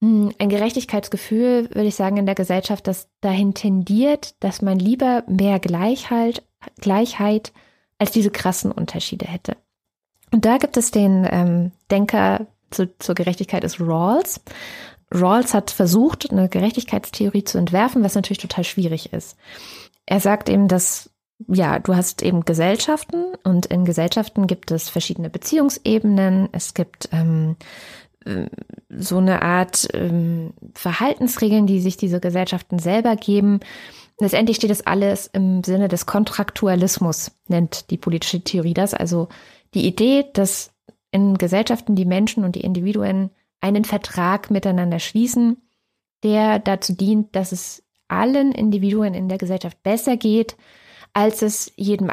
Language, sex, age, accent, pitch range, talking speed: German, female, 20-39, German, 180-215 Hz, 135 wpm